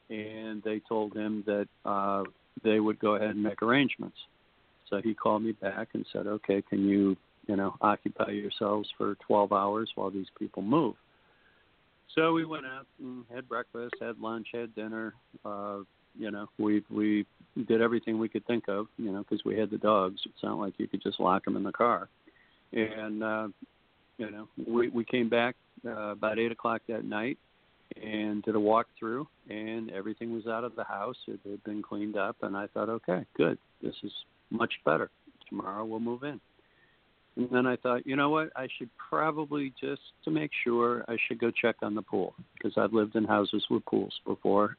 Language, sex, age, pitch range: English, male, 50-69, 105-115 Hz